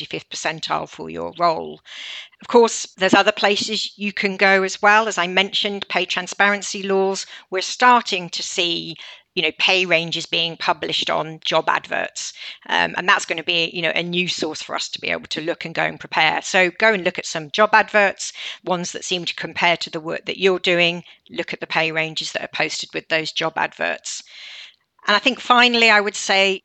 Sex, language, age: female, English, 50-69